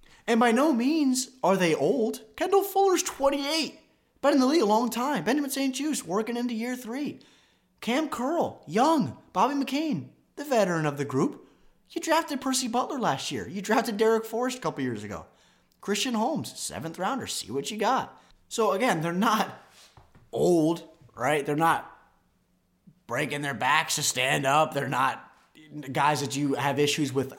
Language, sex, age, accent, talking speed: English, male, 20-39, American, 170 wpm